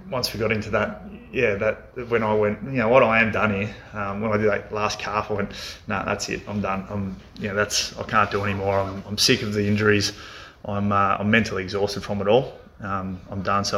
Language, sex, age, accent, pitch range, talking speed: English, male, 20-39, Australian, 95-105 Hz, 255 wpm